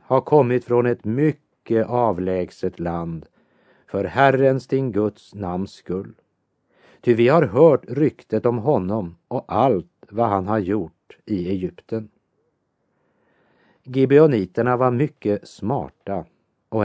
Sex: male